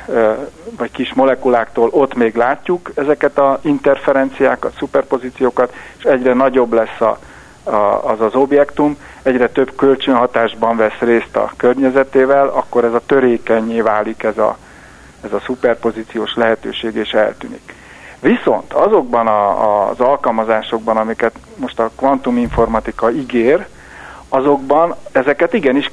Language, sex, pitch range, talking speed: Hungarian, male, 115-140 Hz, 125 wpm